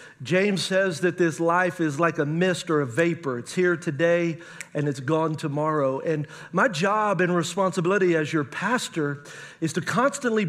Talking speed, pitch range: 170 wpm, 175-215 Hz